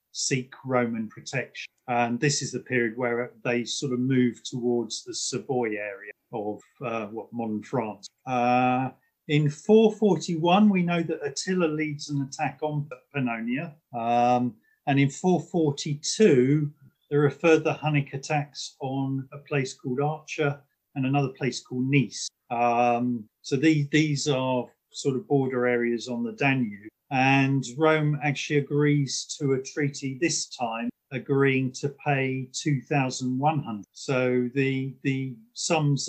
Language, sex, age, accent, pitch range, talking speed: English, male, 40-59, British, 125-160 Hz, 135 wpm